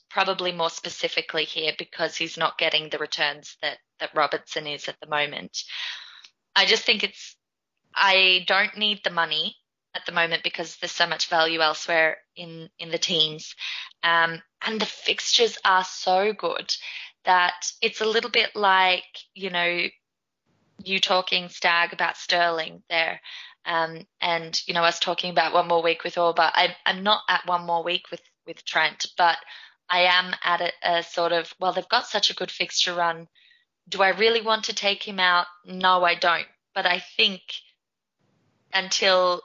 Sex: female